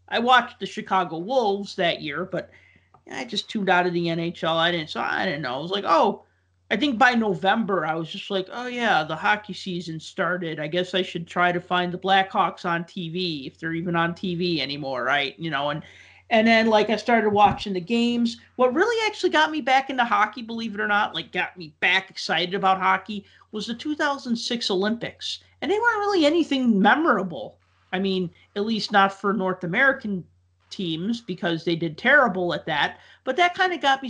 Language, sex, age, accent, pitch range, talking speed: English, male, 40-59, American, 170-225 Hz, 210 wpm